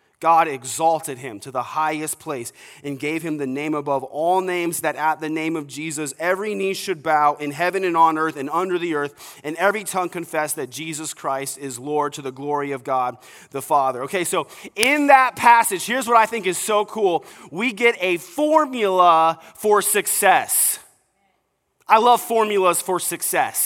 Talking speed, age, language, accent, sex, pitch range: 185 wpm, 30-49, English, American, male, 140-185 Hz